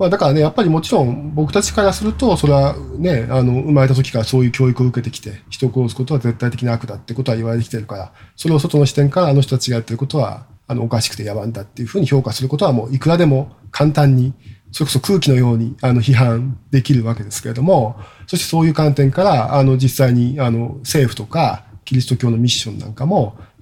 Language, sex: Japanese, male